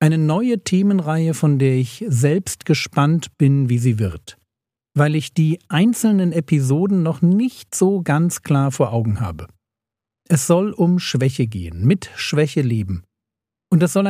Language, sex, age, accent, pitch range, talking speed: German, male, 50-69, German, 130-165 Hz, 155 wpm